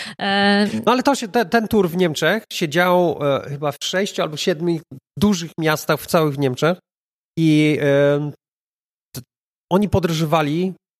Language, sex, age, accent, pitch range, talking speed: Polish, male, 40-59, native, 140-175 Hz, 140 wpm